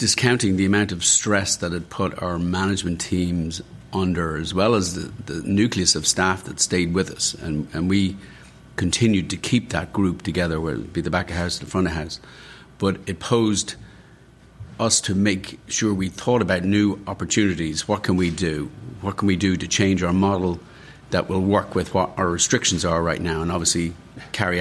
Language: English